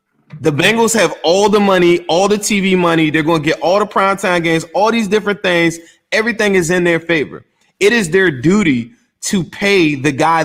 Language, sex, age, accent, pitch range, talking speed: English, male, 20-39, American, 160-195 Hz, 200 wpm